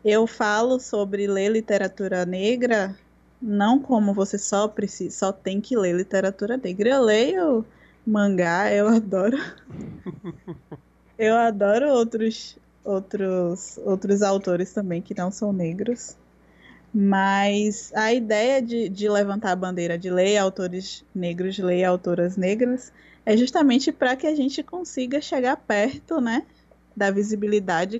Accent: Brazilian